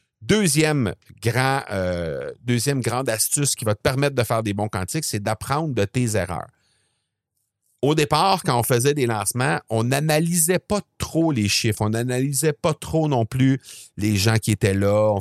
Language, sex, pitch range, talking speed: French, male, 110-150 Hz, 180 wpm